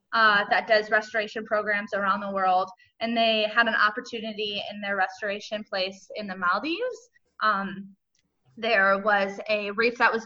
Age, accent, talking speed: 20-39, American, 160 wpm